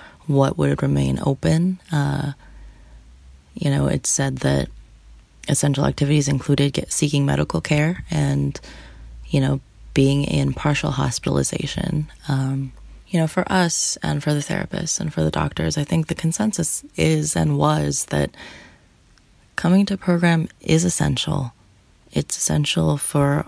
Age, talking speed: 20-39, 135 wpm